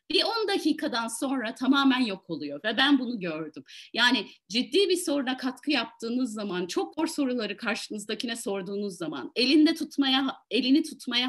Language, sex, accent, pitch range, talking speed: Turkish, female, native, 220-305 Hz, 150 wpm